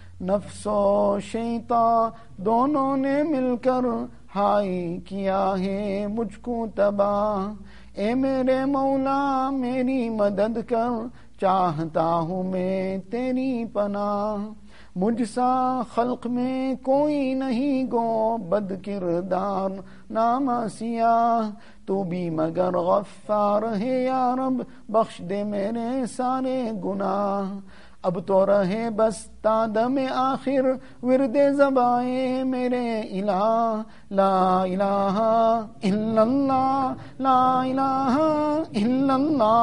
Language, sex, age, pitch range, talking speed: English, male, 50-69, 200-260 Hz, 60 wpm